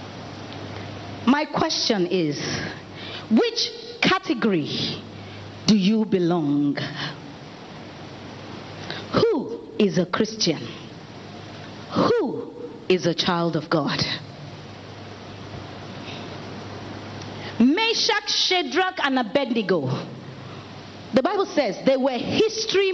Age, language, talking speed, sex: 40-59, English, 75 wpm, female